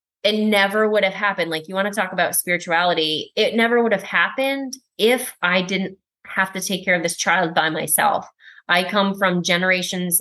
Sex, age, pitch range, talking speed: female, 20-39, 165-190 Hz, 195 wpm